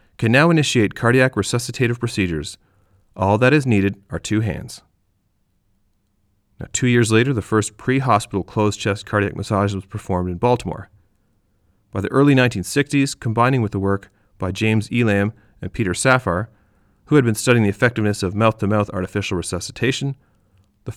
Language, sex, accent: English, male, American